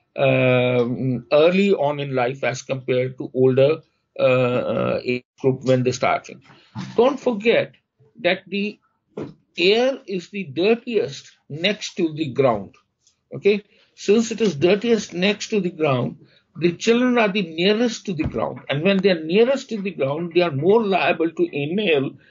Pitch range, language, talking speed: 140-210 Hz, English, 155 wpm